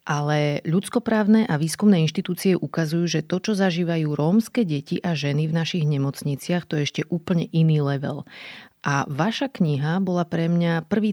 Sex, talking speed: female, 160 wpm